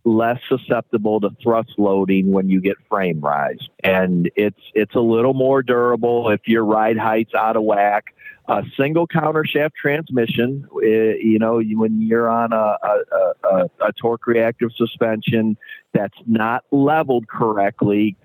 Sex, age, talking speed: male, 50-69, 150 wpm